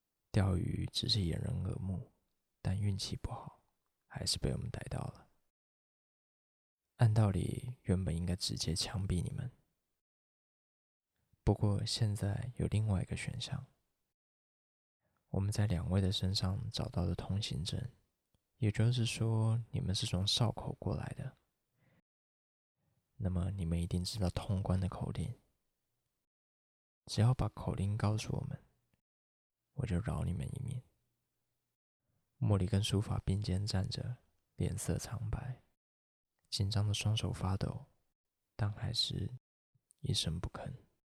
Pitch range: 95-120 Hz